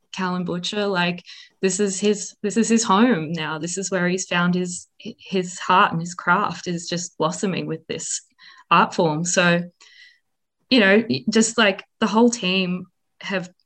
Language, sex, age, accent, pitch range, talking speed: English, female, 20-39, Australian, 170-205 Hz, 165 wpm